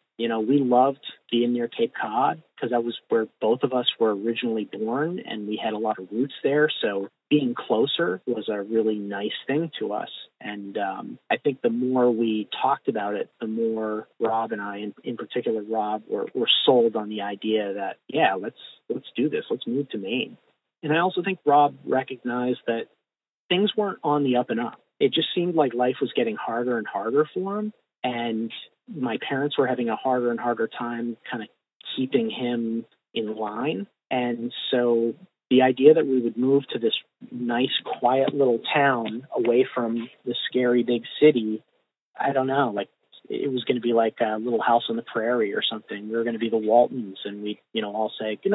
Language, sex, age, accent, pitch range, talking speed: English, male, 40-59, American, 115-140 Hz, 205 wpm